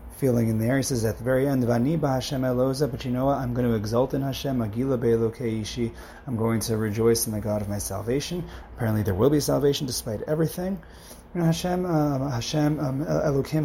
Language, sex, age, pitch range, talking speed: English, male, 30-49, 110-135 Hz, 175 wpm